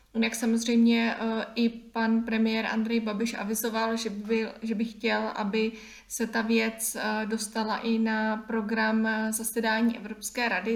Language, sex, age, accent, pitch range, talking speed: Czech, female, 20-39, native, 215-235 Hz, 135 wpm